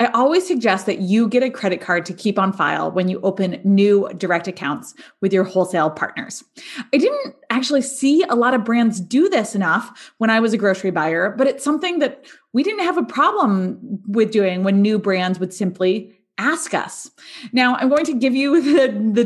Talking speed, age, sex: 205 wpm, 20-39, female